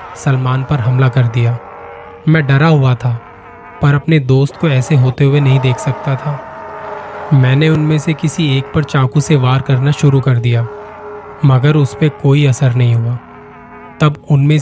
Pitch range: 125-150 Hz